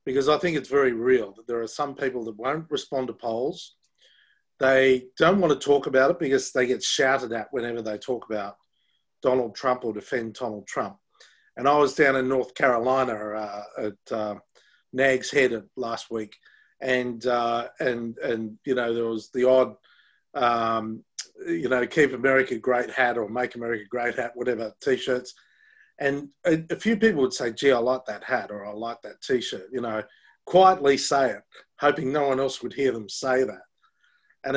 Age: 40-59